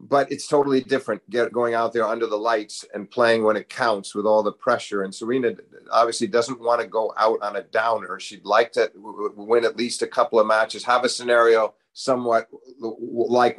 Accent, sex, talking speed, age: American, male, 200 wpm, 50-69